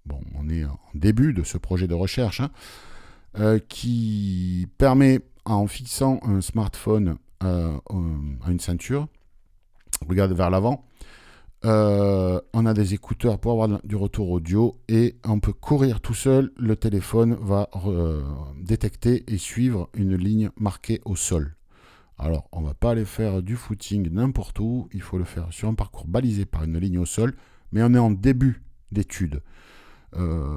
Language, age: French, 50-69